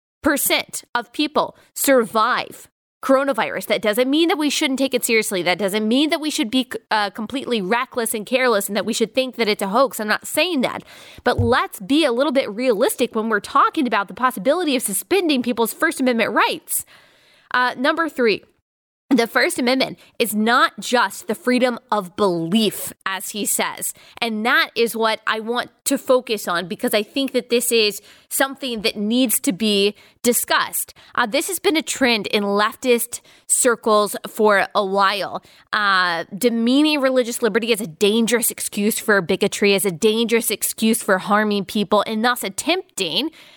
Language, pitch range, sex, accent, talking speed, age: English, 210-270 Hz, female, American, 175 wpm, 20-39